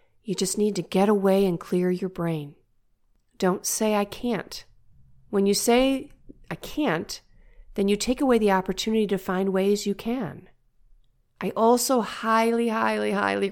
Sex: female